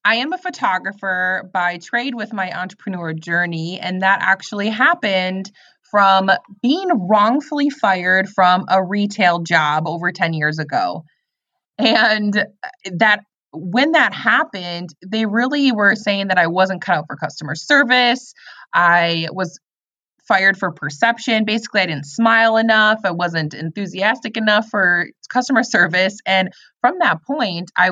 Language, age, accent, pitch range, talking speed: English, 20-39, American, 175-220 Hz, 140 wpm